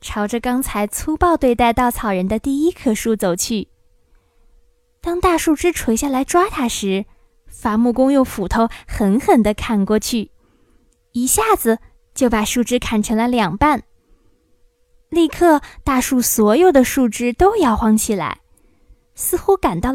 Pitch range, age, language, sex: 215-315 Hz, 20-39, Chinese, female